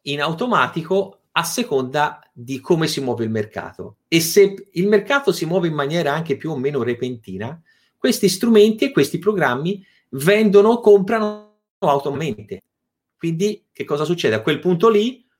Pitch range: 120-195 Hz